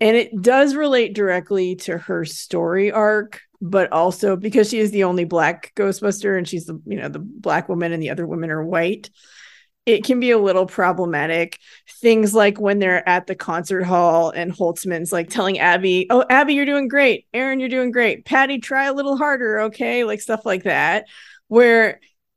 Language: English